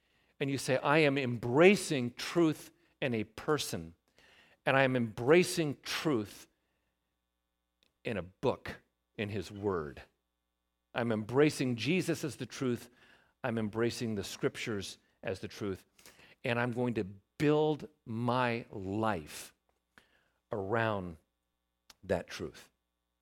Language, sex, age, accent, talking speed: English, male, 50-69, American, 115 wpm